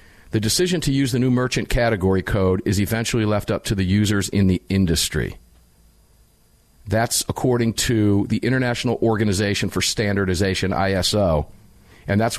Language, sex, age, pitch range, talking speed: English, male, 50-69, 95-115 Hz, 145 wpm